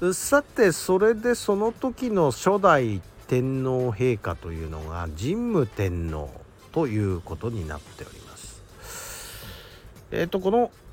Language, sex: Japanese, male